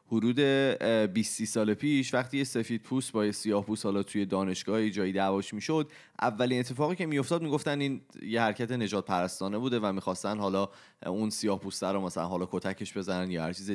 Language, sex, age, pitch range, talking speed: Persian, male, 30-49, 95-125 Hz, 180 wpm